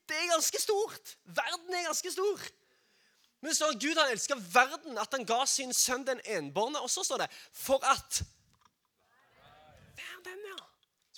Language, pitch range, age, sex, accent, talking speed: English, 215-305 Hz, 20-39, male, Swedish, 160 wpm